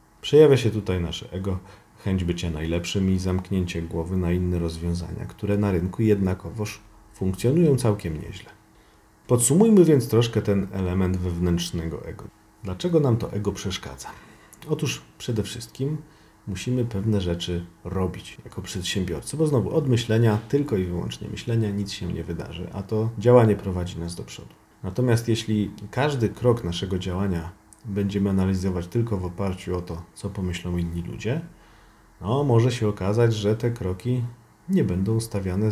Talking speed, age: 150 wpm, 40-59